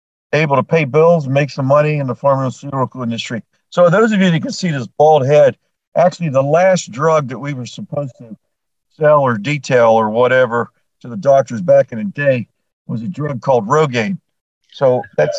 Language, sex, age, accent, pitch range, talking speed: English, male, 50-69, American, 120-150 Hz, 190 wpm